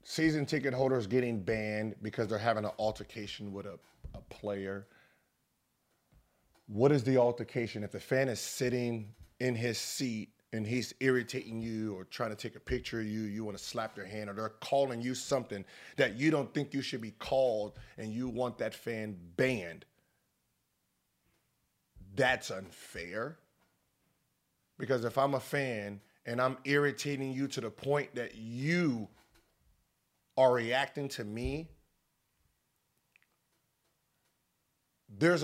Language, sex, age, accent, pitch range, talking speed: English, male, 30-49, American, 110-140 Hz, 140 wpm